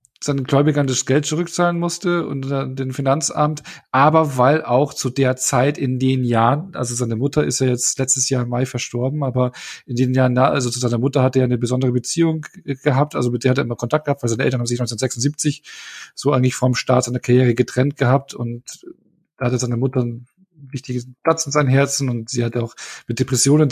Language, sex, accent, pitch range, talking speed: German, male, German, 125-140 Hz, 210 wpm